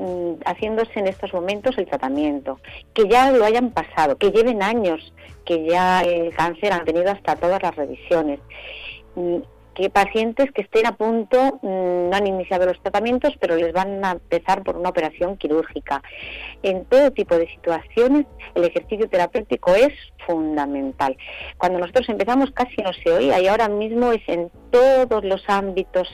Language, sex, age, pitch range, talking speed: Spanish, female, 40-59, 155-205 Hz, 160 wpm